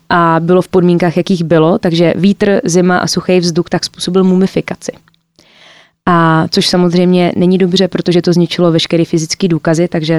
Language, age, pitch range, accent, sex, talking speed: Czech, 20-39, 170-195 Hz, native, female, 160 wpm